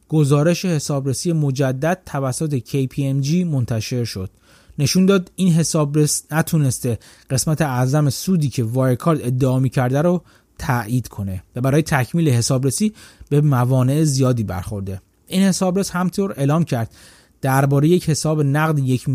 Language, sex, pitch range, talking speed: Persian, male, 125-175 Hz, 140 wpm